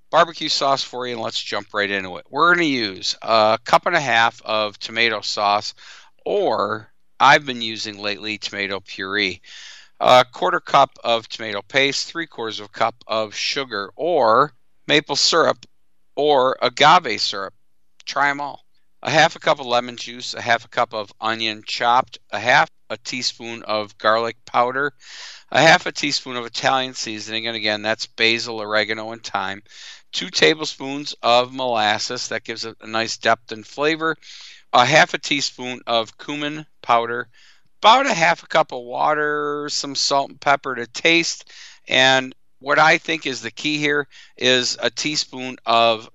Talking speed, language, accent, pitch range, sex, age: 170 wpm, English, American, 110-135 Hz, male, 50-69